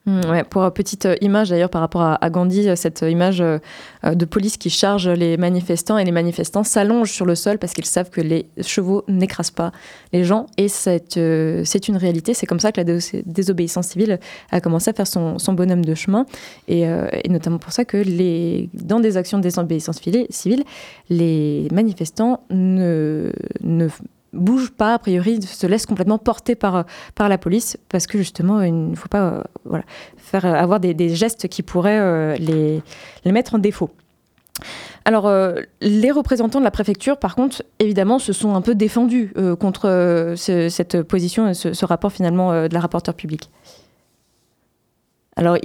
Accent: French